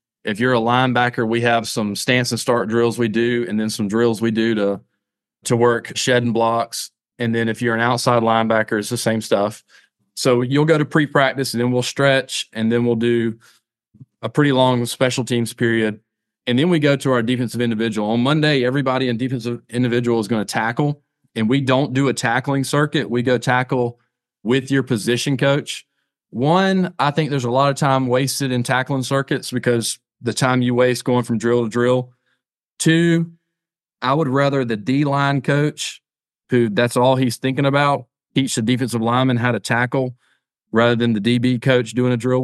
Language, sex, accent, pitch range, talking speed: English, male, American, 115-130 Hz, 195 wpm